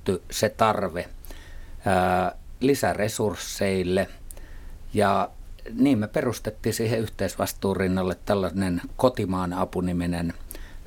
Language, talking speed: Finnish, 75 wpm